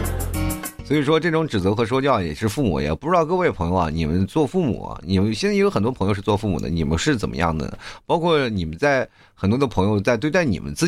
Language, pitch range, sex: Chinese, 85-115 Hz, male